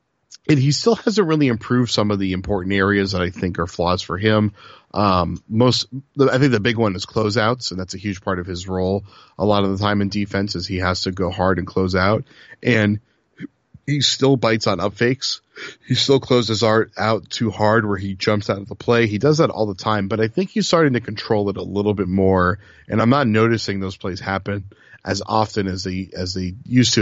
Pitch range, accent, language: 95-115 Hz, American, English